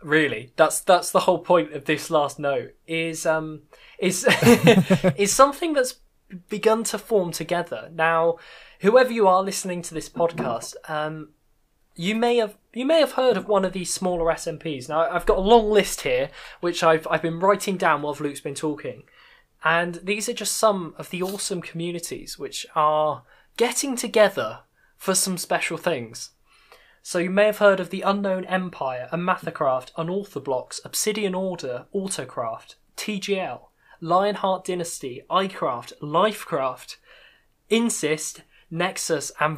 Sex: male